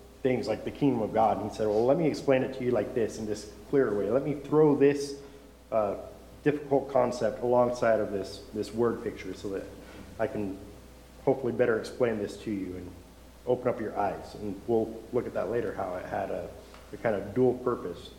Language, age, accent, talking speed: English, 40-59, American, 215 wpm